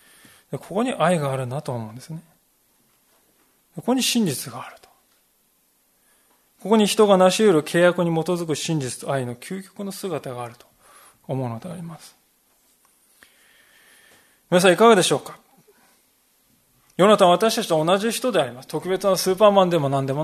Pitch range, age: 150-200 Hz, 20-39